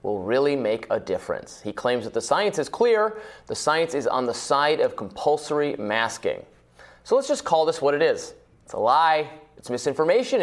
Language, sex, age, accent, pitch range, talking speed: English, male, 30-49, American, 130-175 Hz, 195 wpm